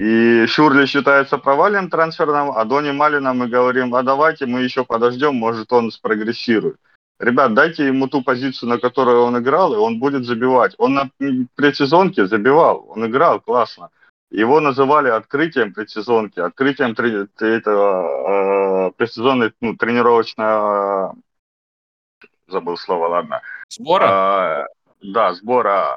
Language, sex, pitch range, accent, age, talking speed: Russian, male, 110-135 Hz, native, 30-49, 120 wpm